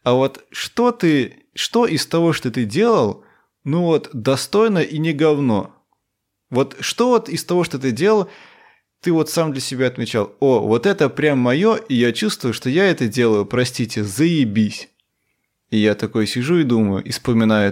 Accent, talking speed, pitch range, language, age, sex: native, 175 wpm, 110-150 Hz, Russian, 20-39, male